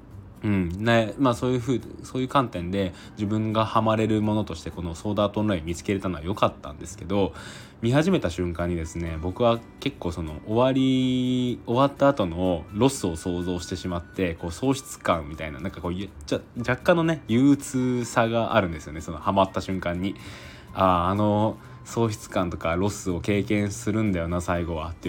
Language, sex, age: Japanese, male, 20-39